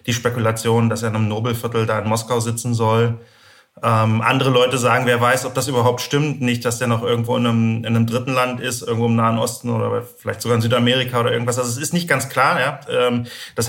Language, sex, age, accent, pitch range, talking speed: German, male, 30-49, German, 115-130 Hz, 235 wpm